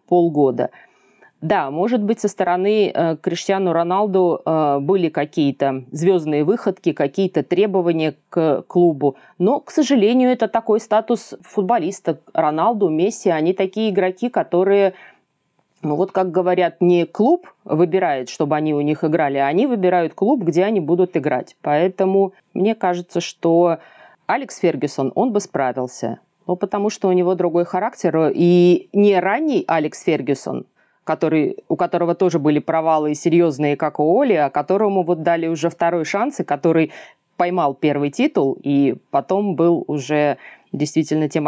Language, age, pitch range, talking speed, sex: Russian, 30-49, 150-190 Hz, 140 wpm, female